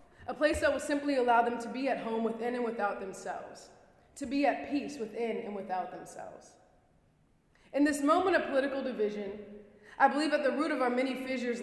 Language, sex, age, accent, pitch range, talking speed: English, female, 20-39, American, 215-275 Hz, 195 wpm